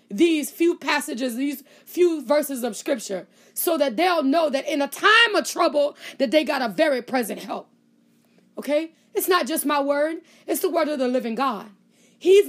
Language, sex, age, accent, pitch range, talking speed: English, female, 20-39, American, 235-335 Hz, 185 wpm